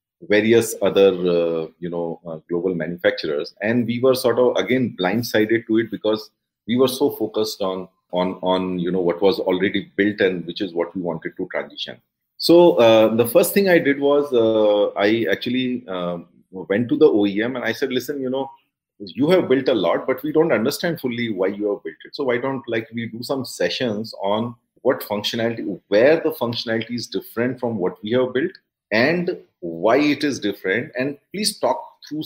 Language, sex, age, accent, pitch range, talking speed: English, male, 30-49, Indian, 95-130 Hz, 195 wpm